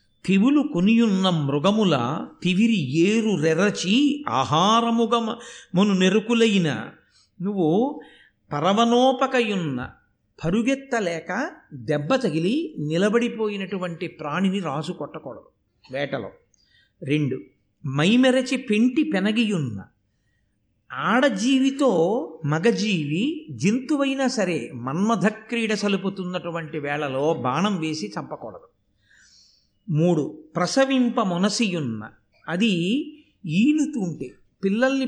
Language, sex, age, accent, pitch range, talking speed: Telugu, male, 50-69, native, 165-250 Hz, 65 wpm